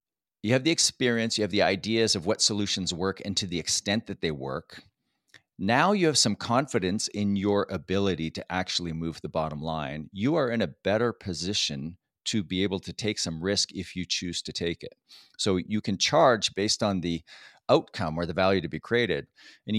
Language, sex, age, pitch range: English, male, 40-59, 90-115 Hz